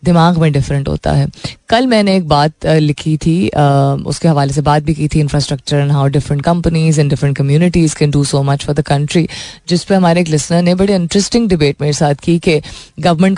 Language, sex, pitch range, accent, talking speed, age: Hindi, female, 145-190 Hz, native, 210 wpm, 20-39